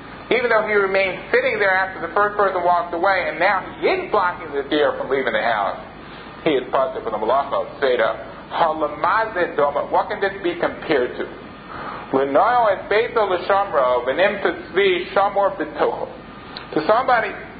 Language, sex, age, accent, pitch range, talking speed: English, male, 40-59, American, 175-220 Hz, 125 wpm